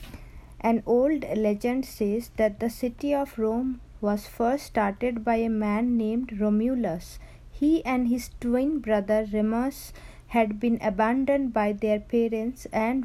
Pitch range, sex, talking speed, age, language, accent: 215-255 Hz, female, 140 wpm, 50-69, English, Indian